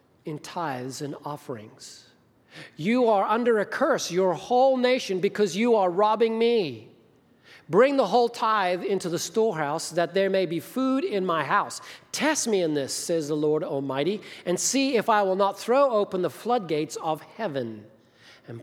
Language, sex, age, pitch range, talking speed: English, male, 40-59, 130-180 Hz, 170 wpm